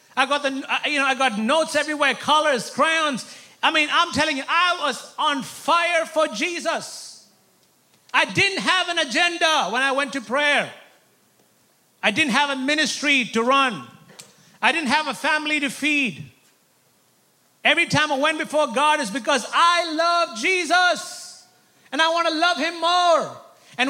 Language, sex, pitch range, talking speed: English, male, 240-310 Hz, 165 wpm